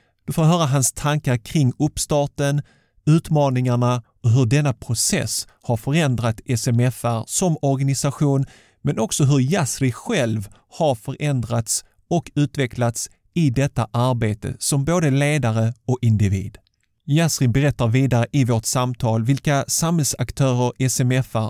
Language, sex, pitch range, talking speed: Swedish, male, 115-140 Hz, 120 wpm